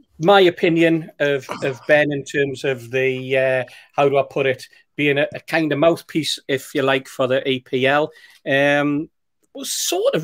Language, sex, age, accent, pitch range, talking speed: English, male, 40-59, British, 130-165 Hz, 180 wpm